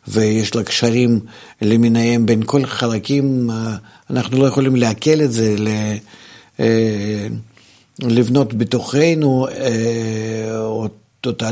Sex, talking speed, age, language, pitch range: male, 85 wpm, 60-79, Hebrew, 110-135 Hz